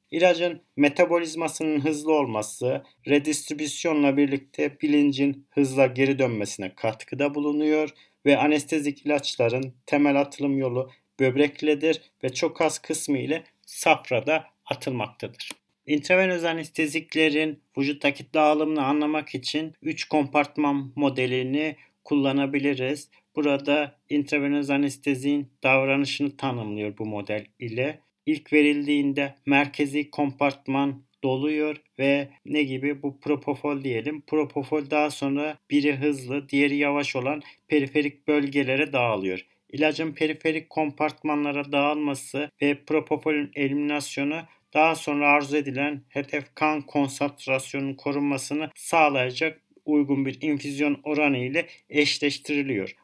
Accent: native